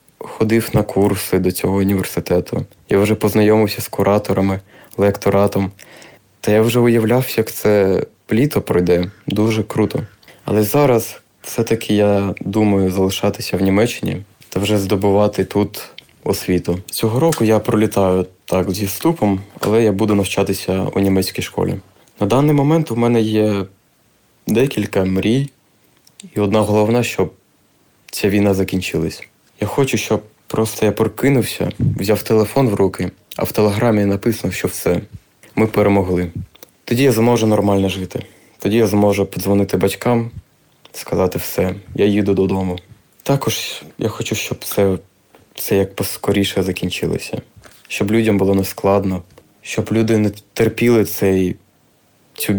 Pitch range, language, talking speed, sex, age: 95-115 Hz, Ukrainian, 130 wpm, male, 20-39